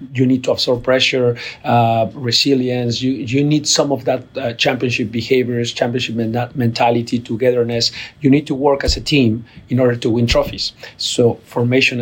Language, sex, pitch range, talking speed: English, male, 115-130 Hz, 170 wpm